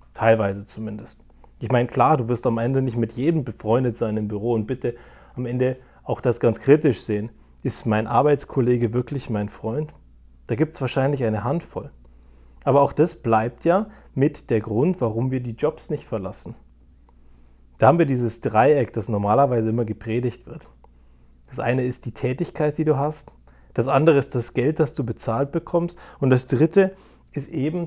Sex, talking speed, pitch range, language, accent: male, 180 wpm, 110-145 Hz, German, German